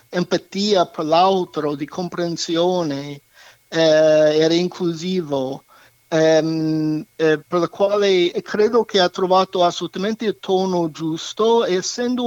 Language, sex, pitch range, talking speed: Italian, male, 155-195 Hz, 110 wpm